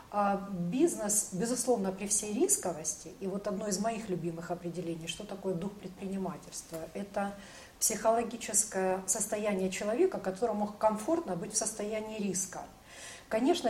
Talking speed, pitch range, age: 120 wpm, 185-230 Hz, 40-59